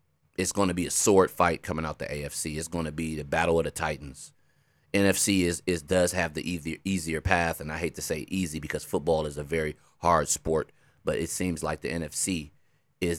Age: 30-49